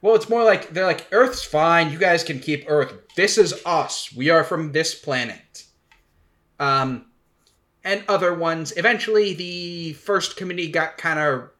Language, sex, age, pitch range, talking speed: English, male, 10-29, 125-175 Hz, 165 wpm